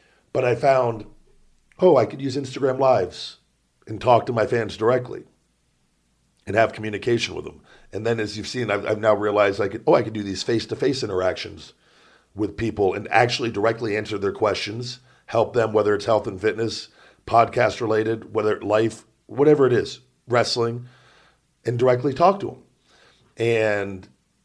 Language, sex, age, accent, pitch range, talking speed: English, male, 50-69, American, 100-125 Hz, 160 wpm